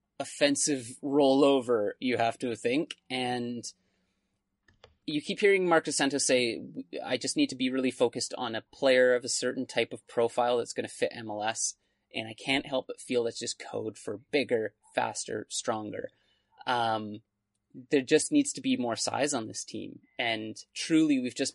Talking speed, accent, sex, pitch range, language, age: 175 wpm, American, male, 115-155 Hz, English, 30-49